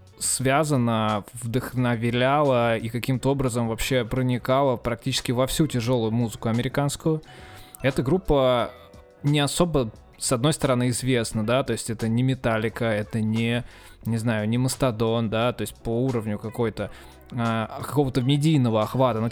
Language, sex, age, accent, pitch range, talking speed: Russian, male, 20-39, native, 115-135 Hz, 135 wpm